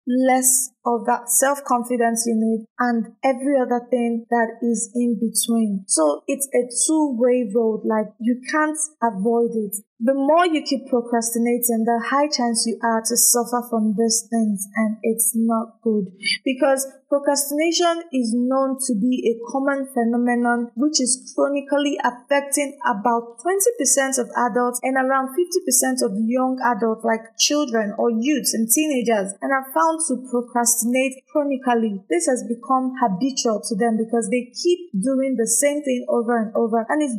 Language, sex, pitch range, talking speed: English, female, 230-270 Hz, 155 wpm